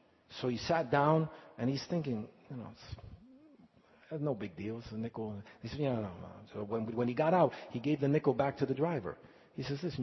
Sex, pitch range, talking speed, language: male, 130-215 Hz, 235 wpm, English